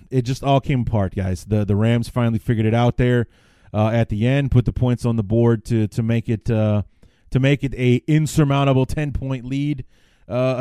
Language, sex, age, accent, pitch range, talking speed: English, male, 30-49, American, 100-125 Hz, 215 wpm